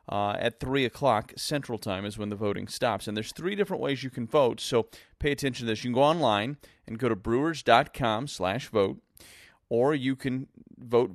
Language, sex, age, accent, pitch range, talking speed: English, male, 30-49, American, 110-140 Hz, 200 wpm